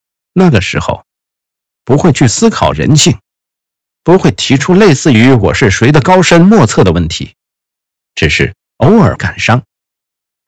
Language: Chinese